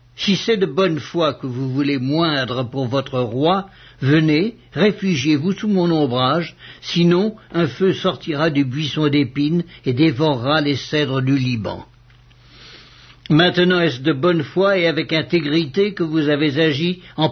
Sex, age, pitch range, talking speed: male, 60-79, 140-175 Hz, 150 wpm